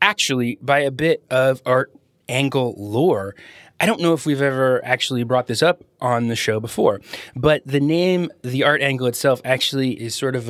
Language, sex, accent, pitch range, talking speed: English, male, American, 120-155 Hz, 190 wpm